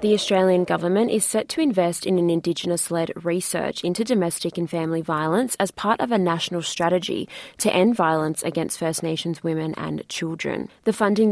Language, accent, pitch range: English, Australian, 170-195 Hz